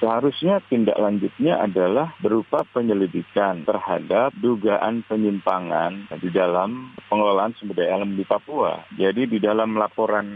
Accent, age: native, 40-59